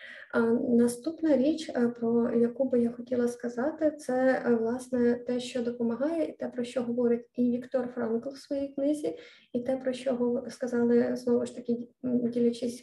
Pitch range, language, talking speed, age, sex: 240-265 Hz, Ukrainian, 165 wpm, 20-39, female